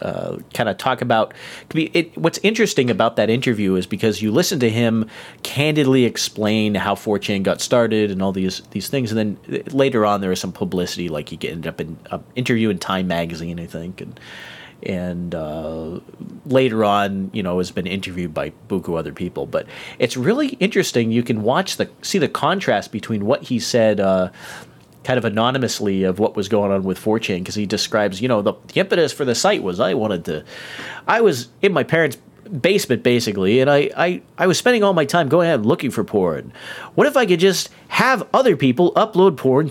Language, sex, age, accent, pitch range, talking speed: English, male, 40-59, American, 100-140 Hz, 210 wpm